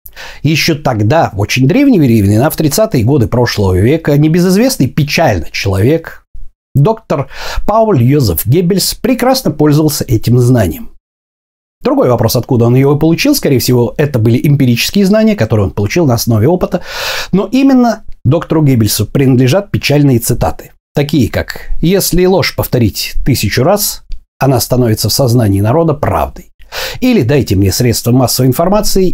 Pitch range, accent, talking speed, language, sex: 110-165 Hz, native, 140 wpm, Russian, male